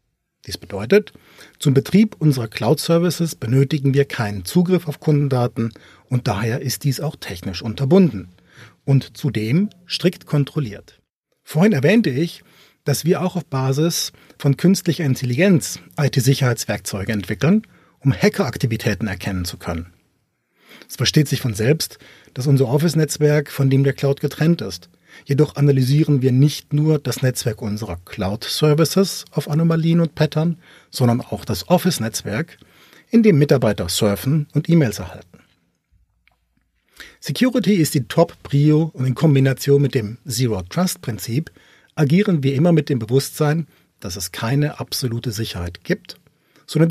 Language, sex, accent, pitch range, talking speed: German, male, German, 120-165 Hz, 130 wpm